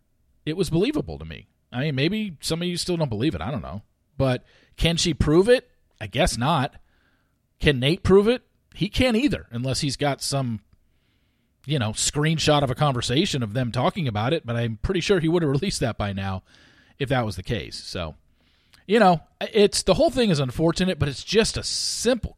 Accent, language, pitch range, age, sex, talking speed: American, English, 110-165 Hz, 40-59, male, 210 wpm